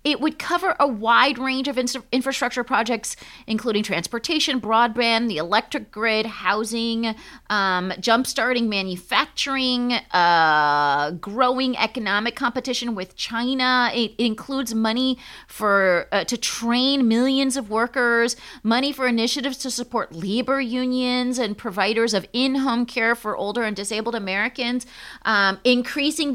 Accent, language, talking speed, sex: American, English, 125 wpm, female